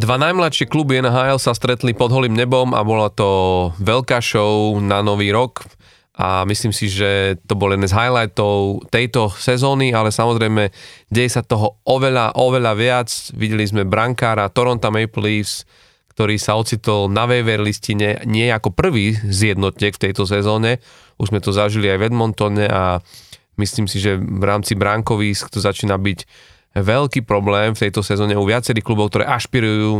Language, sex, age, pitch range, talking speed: Slovak, male, 30-49, 100-115 Hz, 165 wpm